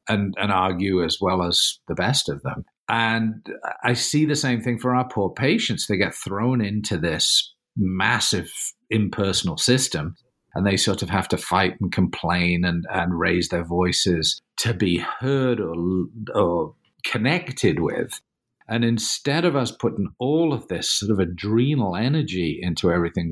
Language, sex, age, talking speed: English, male, 50-69, 160 wpm